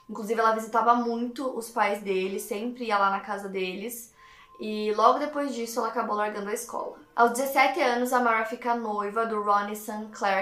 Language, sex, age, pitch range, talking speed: Portuguese, female, 10-29, 205-245 Hz, 190 wpm